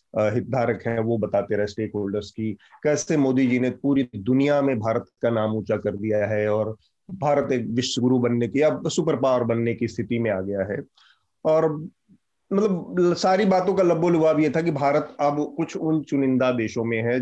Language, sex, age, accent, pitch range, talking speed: Hindi, male, 30-49, native, 120-165 Hz, 190 wpm